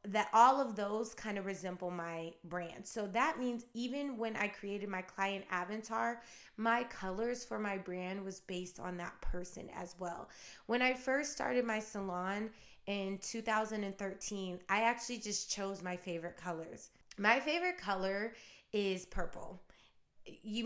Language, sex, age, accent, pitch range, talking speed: English, female, 20-39, American, 185-225 Hz, 150 wpm